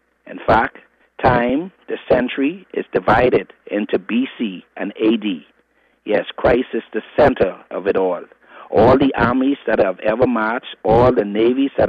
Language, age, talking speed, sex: English, 50-69, 150 wpm, male